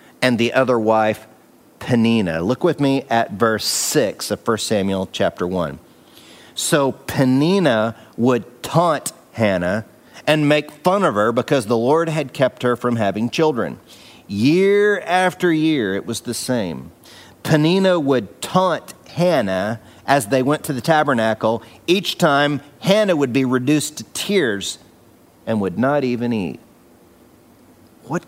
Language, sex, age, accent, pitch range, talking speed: English, male, 40-59, American, 115-150 Hz, 140 wpm